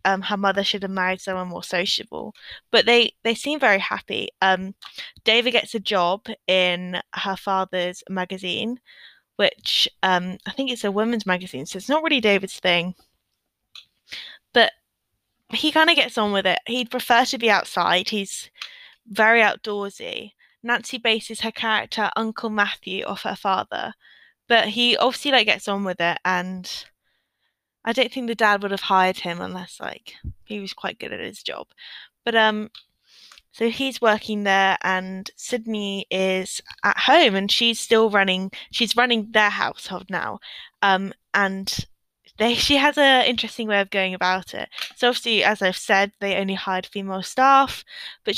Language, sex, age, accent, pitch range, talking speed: English, female, 10-29, British, 190-235 Hz, 165 wpm